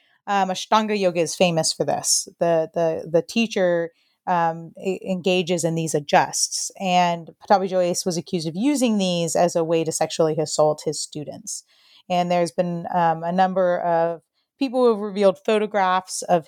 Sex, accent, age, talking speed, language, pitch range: female, American, 30-49, 165 wpm, English, 170-210 Hz